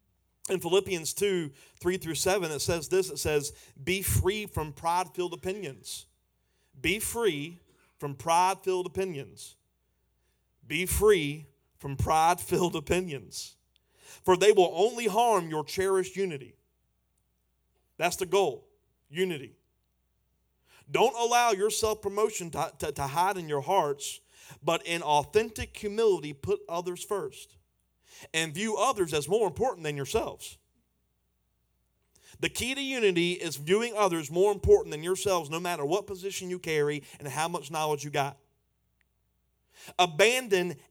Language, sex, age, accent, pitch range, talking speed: English, male, 40-59, American, 135-200 Hz, 125 wpm